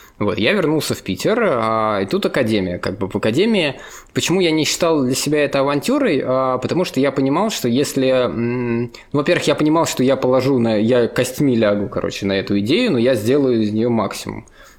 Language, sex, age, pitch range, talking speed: Russian, male, 20-39, 105-130 Hz, 185 wpm